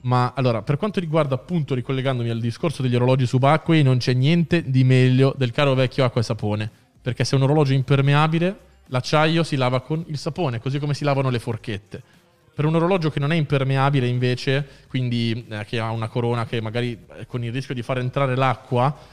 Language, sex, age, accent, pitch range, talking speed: Italian, male, 20-39, native, 115-135 Hz, 205 wpm